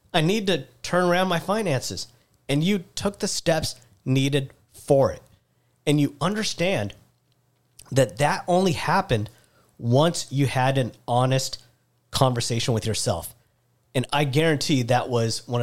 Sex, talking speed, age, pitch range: male, 140 wpm, 40-59, 115-150 Hz